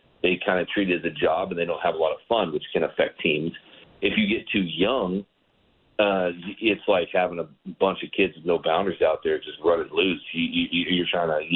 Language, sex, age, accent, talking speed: English, male, 40-59, American, 245 wpm